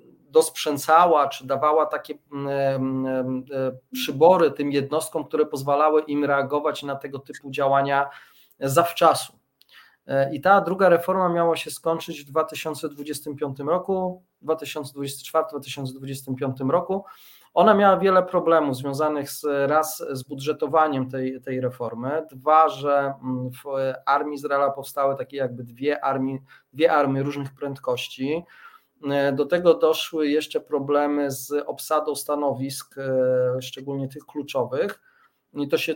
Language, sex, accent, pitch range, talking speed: Polish, male, native, 135-160 Hz, 110 wpm